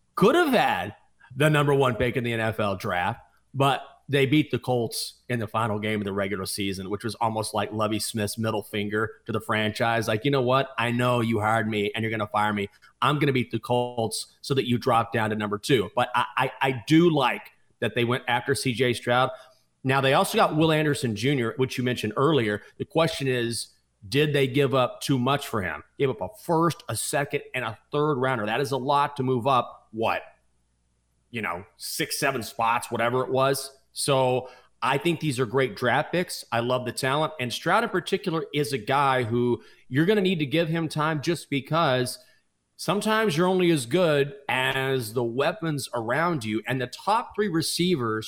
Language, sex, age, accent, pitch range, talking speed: English, male, 30-49, American, 115-150 Hz, 210 wpm